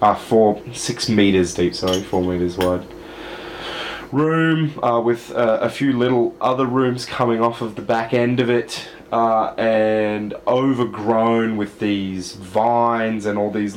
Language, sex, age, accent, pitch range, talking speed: English, male, 20-39, Australian, 100-120 Hz, 155 wpm